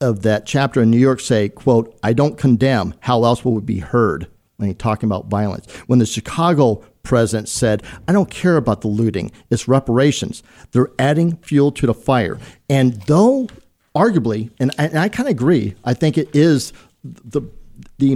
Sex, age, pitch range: male, 50-69, 115-155 Hz